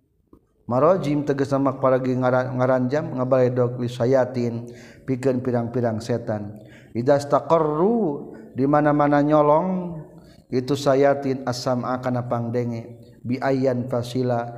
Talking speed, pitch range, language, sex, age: 105 wpm, 120-140 Hz, Indonesian, male, 50-69